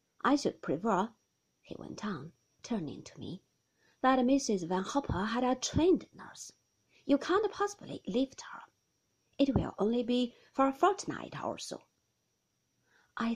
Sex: female